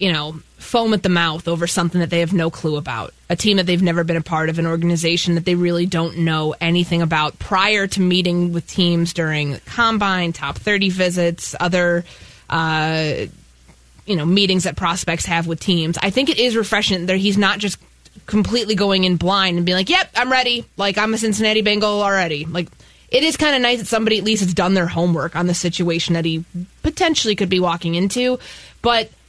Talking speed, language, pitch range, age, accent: 210 wpm, English, 170-215 Hz, 20-39, American